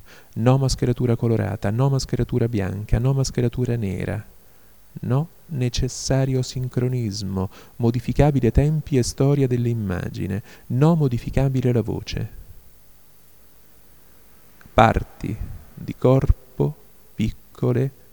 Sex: male